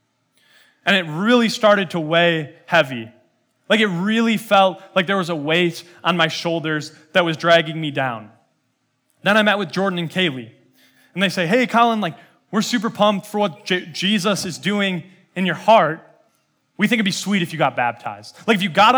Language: English